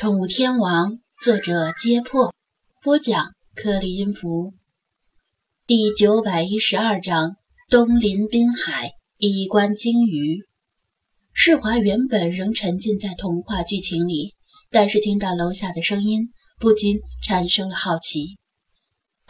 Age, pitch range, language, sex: 20-39, 180-235 Hz, Chinese, female